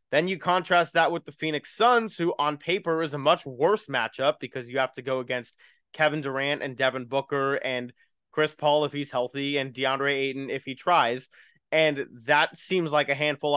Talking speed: 200 wpm